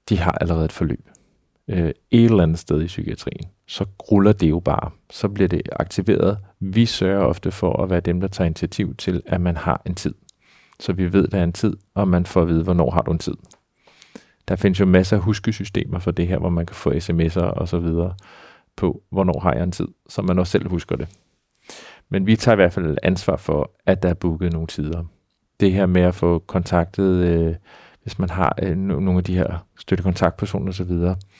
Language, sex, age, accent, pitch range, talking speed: Danish, male, 30-49, native, 85-100 Hz, 210 wpm